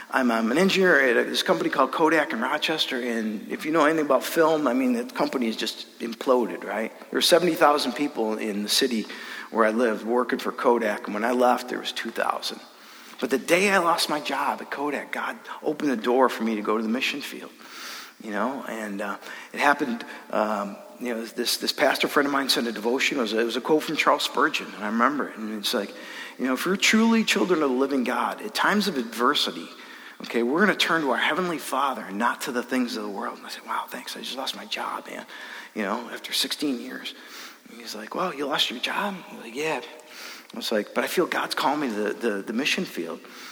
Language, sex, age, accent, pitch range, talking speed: English, male, 50-69, American, 120-165 Hz, 240 wpm